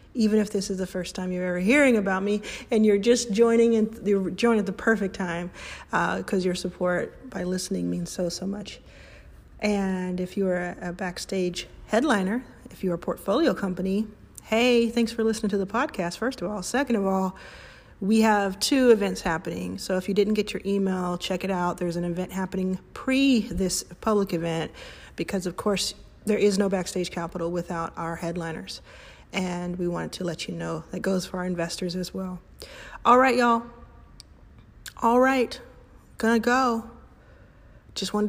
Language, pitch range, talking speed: English, 180-225 Hz, 180 wpm